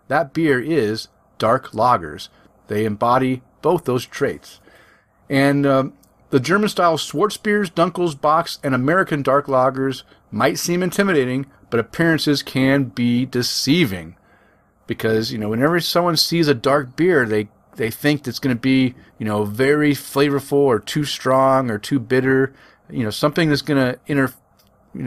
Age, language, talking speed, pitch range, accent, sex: 40-59, English, 155 wpm, 115-155 Hz, American, male